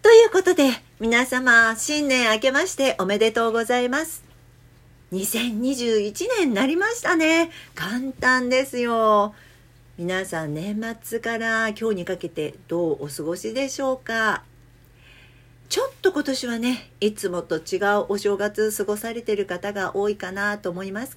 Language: Japanese